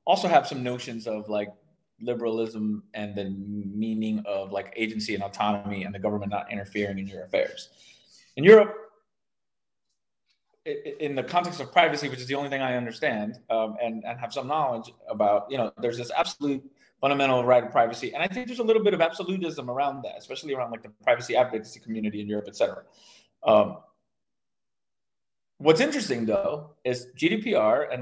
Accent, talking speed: American, 170 wpm